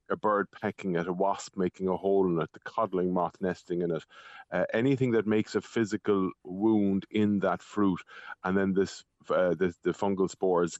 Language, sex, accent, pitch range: English, male, Irish, 95-115 Hz